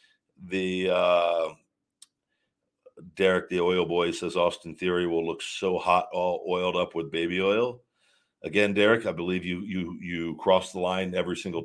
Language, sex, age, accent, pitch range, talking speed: English, male, 50-69, American, 85-115 Hz, 160 wpm